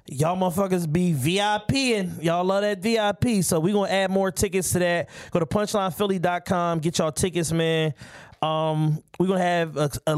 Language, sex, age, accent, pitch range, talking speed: English, male, 20-39, American, 155-190 Hz, 170 wpm